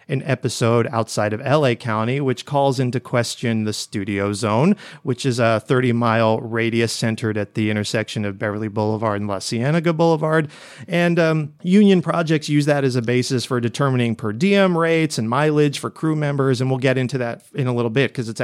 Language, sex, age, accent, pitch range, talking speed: English, male, 30-49, American, 115-150 Hz, 190 wpm